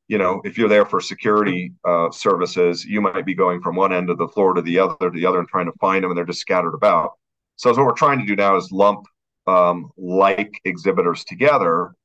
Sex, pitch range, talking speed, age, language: male, 90-115 Hz, 245 wpm, 40-59, English